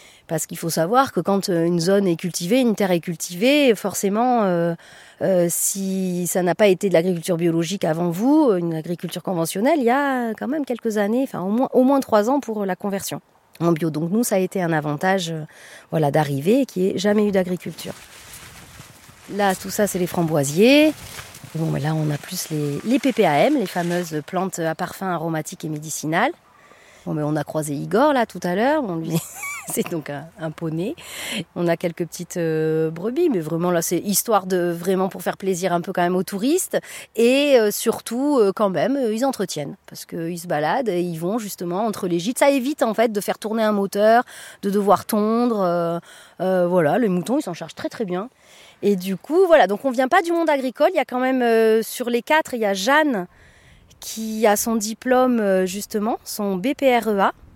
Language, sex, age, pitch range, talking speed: French, female, 30-49, 170-235 Hz, 210 wpm